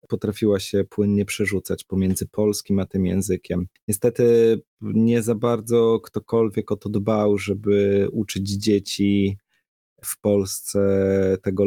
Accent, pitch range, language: native, 100-115 Hz, Polish